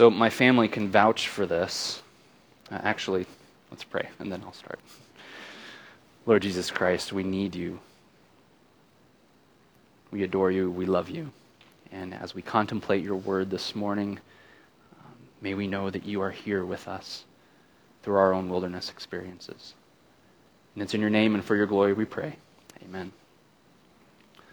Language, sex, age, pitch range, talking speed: English, male, 20-39, 95-110 Hz, 145 wpm